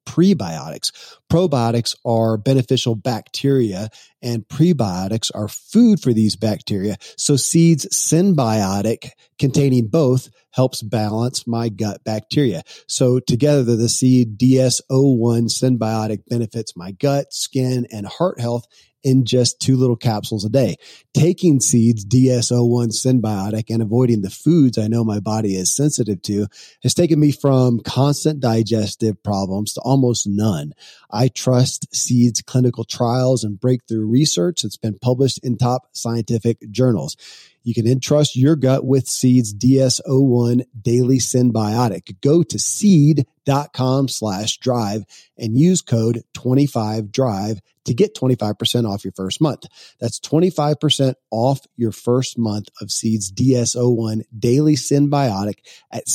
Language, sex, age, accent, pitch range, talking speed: English, male, 40-59, American, 110-135 Hz, 130 wpm